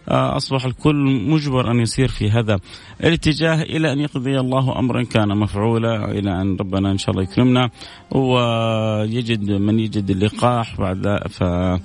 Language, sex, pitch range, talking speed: Arabic, male, 105-135 Hz, 140 wpm